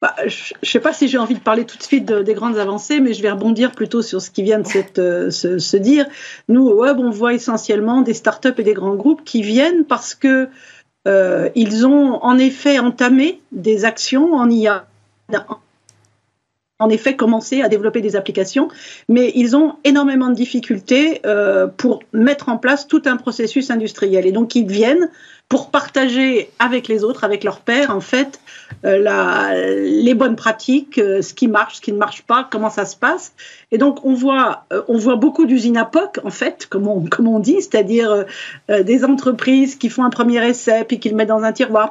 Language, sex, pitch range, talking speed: French, female, 215-270 Hz, 205 wpm